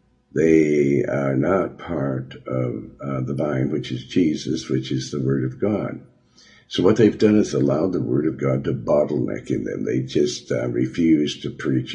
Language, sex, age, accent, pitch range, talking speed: English, male, 60-79, American, 65-90 Hz, 185 wpm